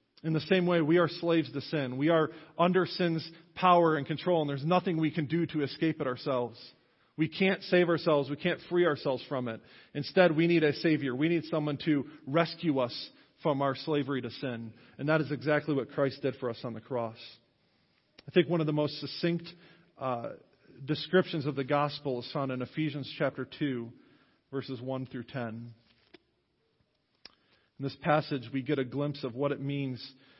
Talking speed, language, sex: 190 wpm, English, male